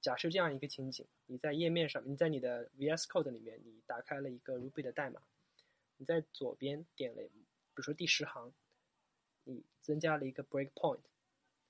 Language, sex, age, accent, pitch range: English, male, 20-39, Chinese, 130-155 Hz